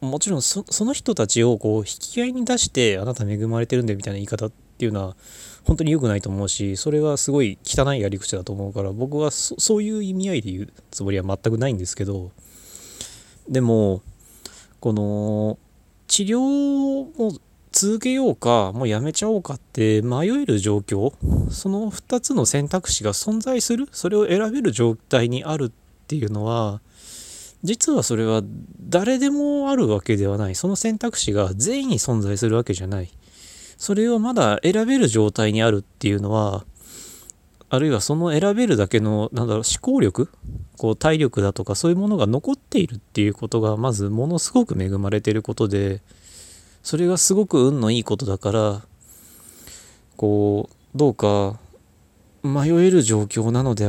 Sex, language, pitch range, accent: male, Japanese, 105-165 Hz, native